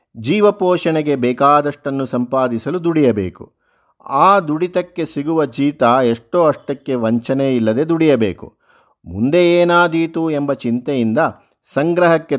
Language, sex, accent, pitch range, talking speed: Kannada, male, native, 120-160 Hz, 85 wpm